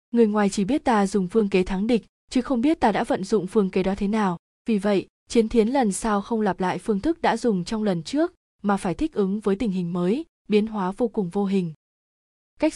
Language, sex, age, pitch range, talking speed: Vietnamese, female, 20-39, 190-235 Hz, 250 wpm